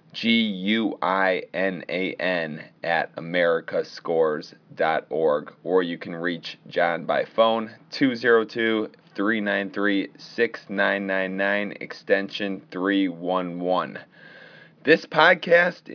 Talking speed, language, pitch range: 55 wpm, English, 95-115 Hz